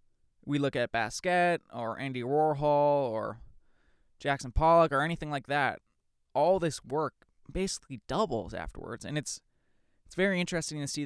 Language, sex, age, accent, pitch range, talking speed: English, male, 20-39, American, 120-140 Hz, 145 wpm